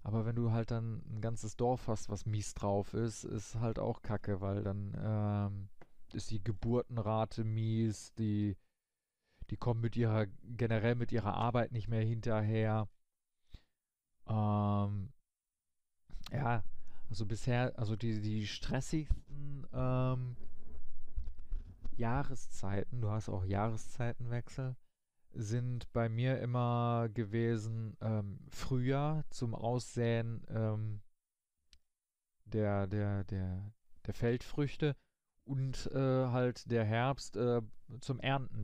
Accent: German